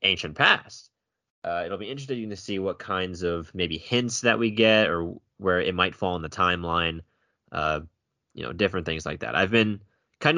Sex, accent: male, American